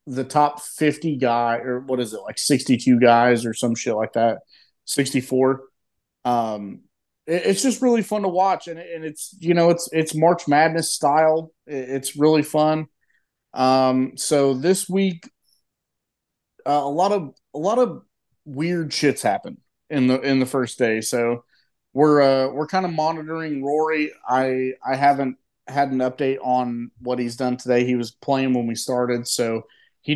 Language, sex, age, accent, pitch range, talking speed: English, male, 30-49, American, 125-155 Hz, 175 wpm